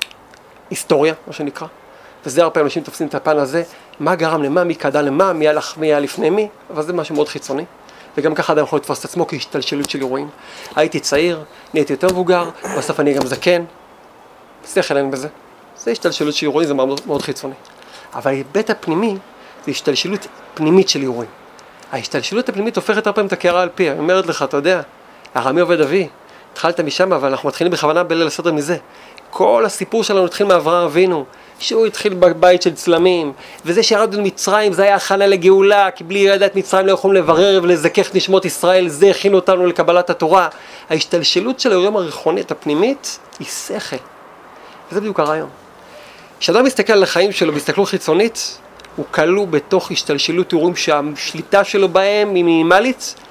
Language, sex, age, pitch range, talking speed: Hebrew, male, 40-59, 155-190 Hz, 155 wpm